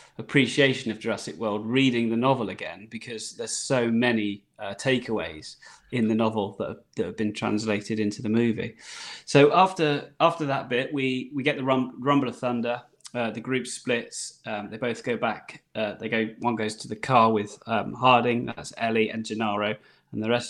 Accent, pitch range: British, 115-135 Hz